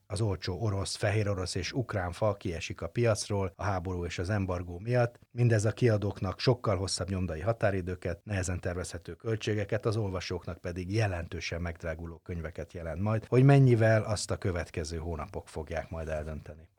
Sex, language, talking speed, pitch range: male, Hungarian, 155 wpm, 90-115 Hz